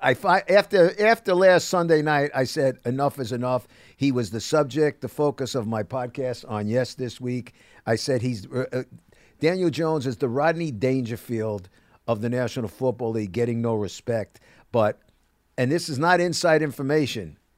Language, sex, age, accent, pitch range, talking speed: English, male, 50-69, American, 120-155 Hz, 165 wpm